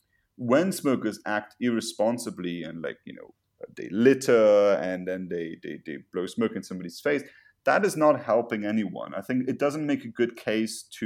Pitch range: 95-125 Hz